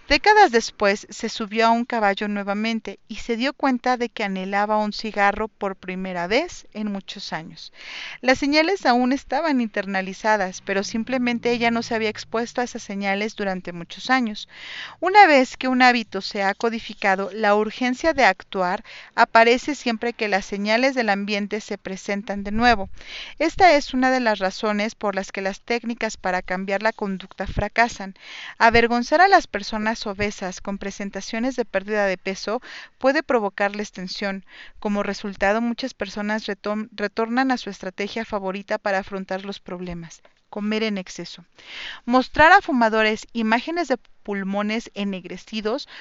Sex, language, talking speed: female, Spanish, 155 wpm